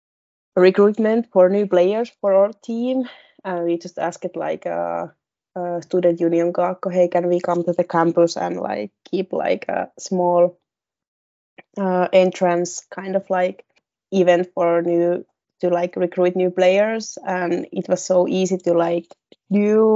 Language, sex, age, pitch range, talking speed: Finnish, female, 20-39, 175-190 Hz, 155 wpm